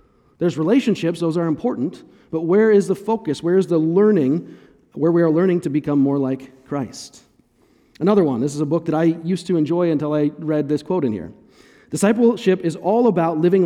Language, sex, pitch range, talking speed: English, male, 150-200 Hz, 200 wpm